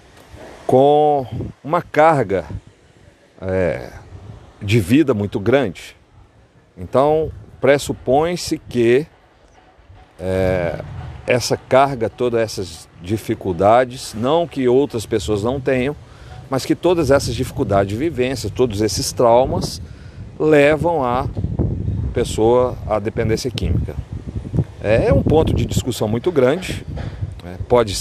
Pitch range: 100-135 Hz